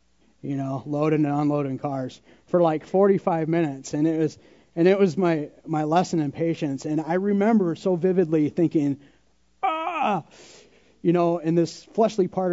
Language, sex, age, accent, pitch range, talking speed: English, male, 30-49, American, 140-180 Hz, 165 wpm